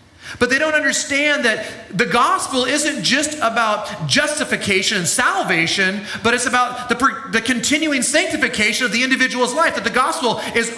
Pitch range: 215-290 Hz